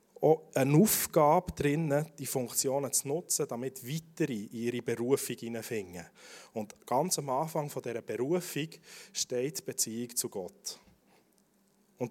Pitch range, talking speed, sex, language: 135-175 Hz, 125 wpm, male, German